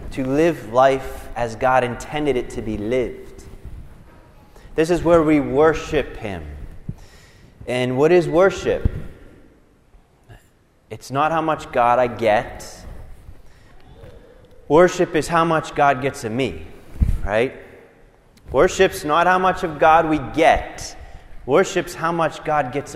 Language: English